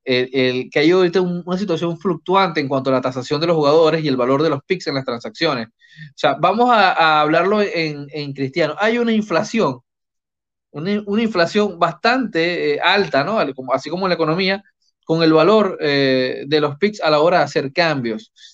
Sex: male